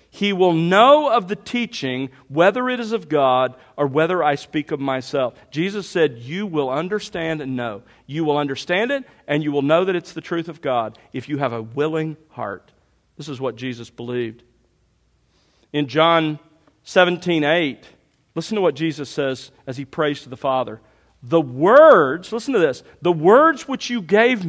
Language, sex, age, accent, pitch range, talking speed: English, male, 50-69, American, 130-180 Hz, 180 wpm